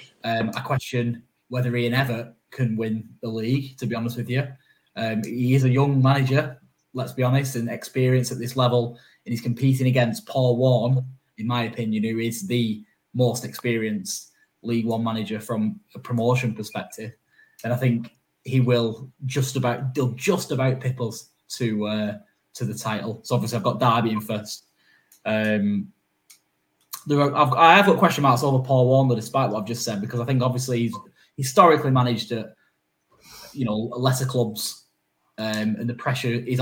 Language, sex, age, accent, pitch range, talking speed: English, male, 10-29, British, 110-130 Hz, 175 wpm